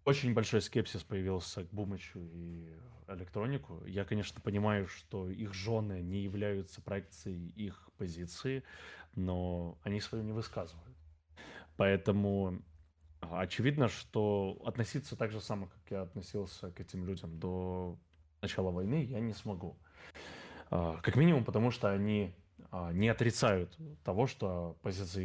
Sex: male